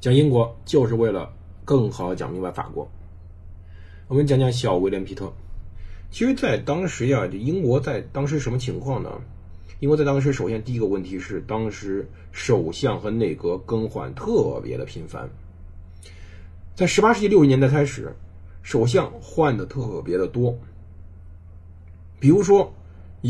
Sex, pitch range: male, 85-145 Hz